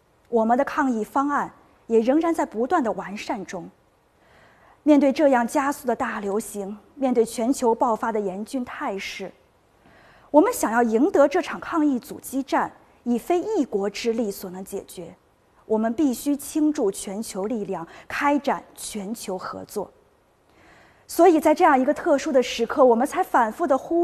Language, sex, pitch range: Chinese, female, 225-300 Hz